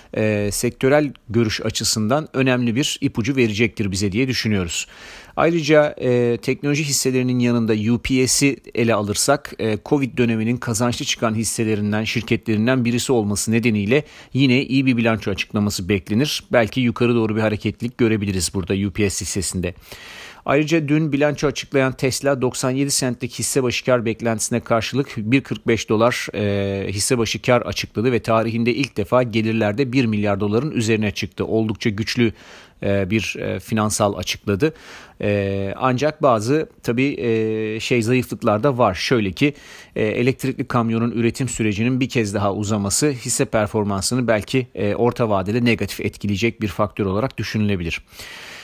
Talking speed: 130 wpm